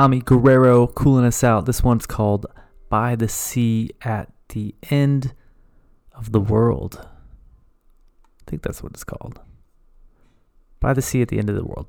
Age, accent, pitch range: 20-39, American, 105-125 Hz